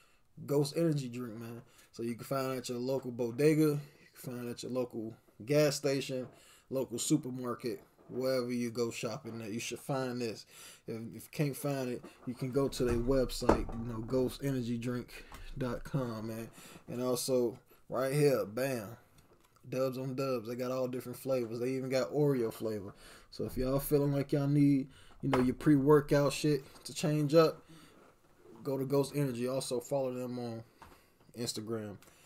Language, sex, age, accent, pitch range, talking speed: English, male, 20-39, American, 115-135 Hz, 170 wpm